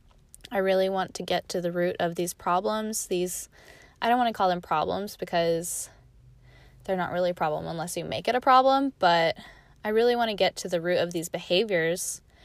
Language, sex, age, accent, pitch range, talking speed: English, female, 10-29, American, 170-195 Hz, 205 wpm